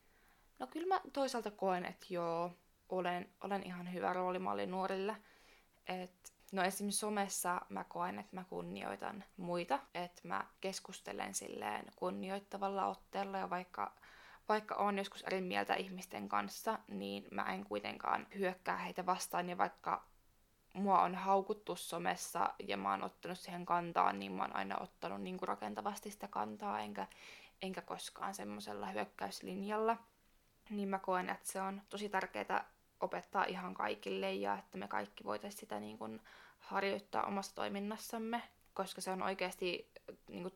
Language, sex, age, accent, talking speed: Finnish, female, 20-39, native, 145 wpm